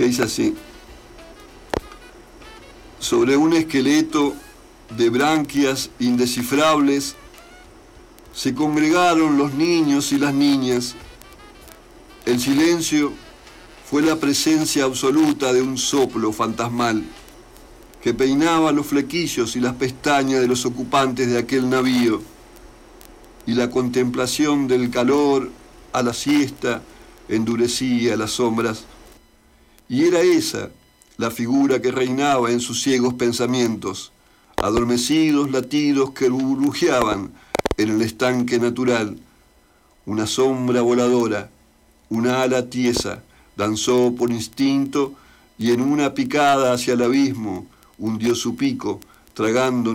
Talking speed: 105 wpm